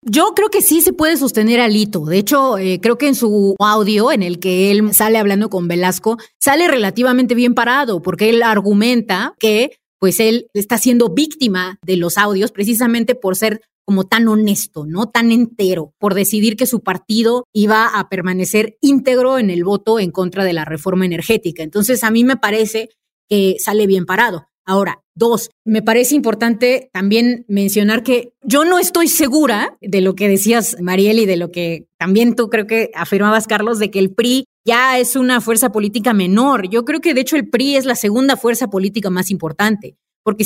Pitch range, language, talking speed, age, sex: 195-245 Hz, Spanish, 190 wpm, 30-49, female